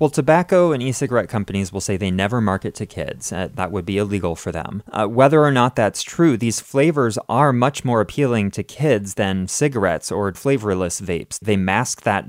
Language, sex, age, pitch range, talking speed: English, male, 30-49, 95-120 Hz, 200 wpm